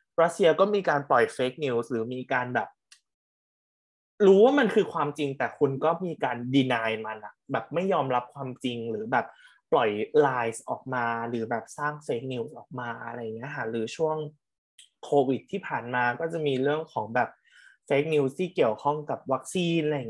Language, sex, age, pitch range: Thai, male, 20-39, 125-155 Hz